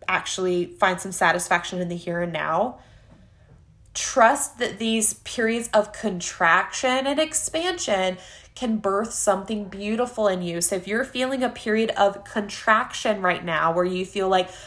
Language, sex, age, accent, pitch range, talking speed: English, female, 20-39, American, 180-225 Hz, 150 wpm